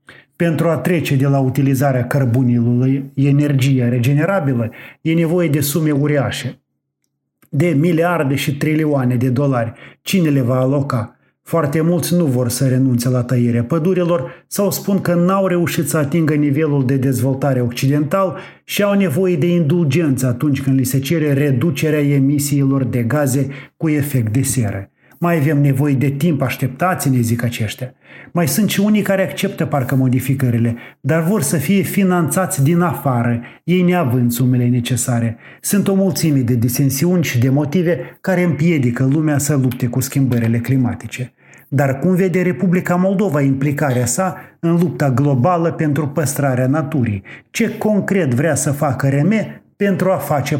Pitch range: 130-170 Hz